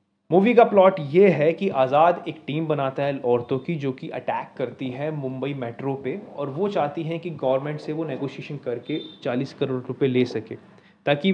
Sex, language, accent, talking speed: male, Hindi, native, 195 wpm